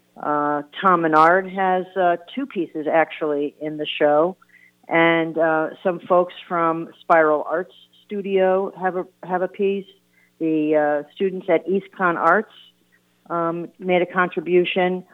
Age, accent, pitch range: 50-69, American, 155-180 Hz